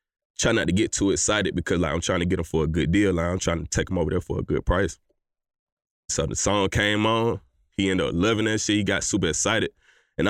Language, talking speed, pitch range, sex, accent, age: English, 260 wpm, 85-100 Hz, male, American, 20-39